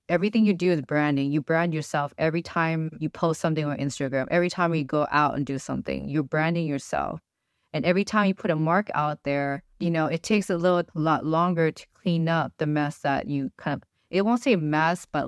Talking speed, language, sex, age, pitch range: 225 wpm, English, female, 20-39, 150-185 Hz